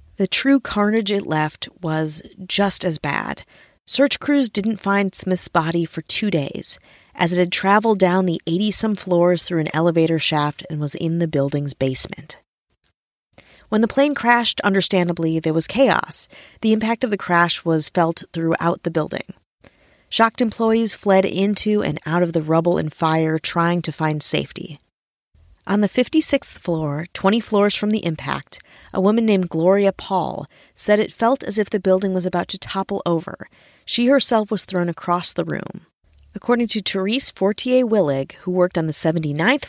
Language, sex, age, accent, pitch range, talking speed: English, female, 30-49, American, 165-210 Hz, 170 wpm